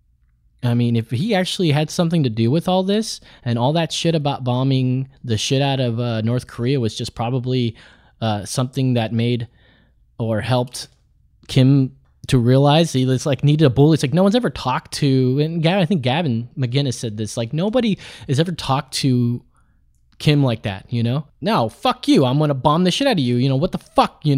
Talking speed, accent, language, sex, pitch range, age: 215 wpm, American, English, male, 115-180 Hz, 20-39